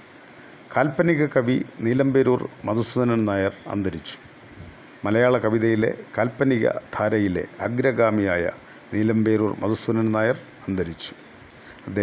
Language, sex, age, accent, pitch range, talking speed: Malayalam, male, 50-69, native, 100-125 Hz, 75 wpm